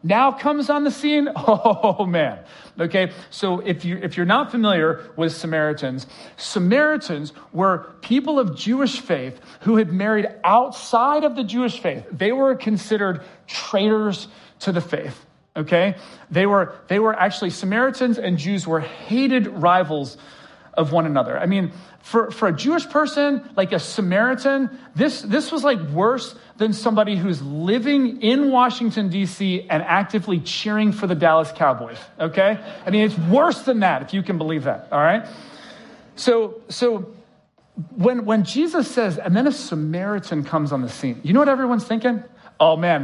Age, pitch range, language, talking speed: 40-59, 175-240 Hz, English, 165 wpm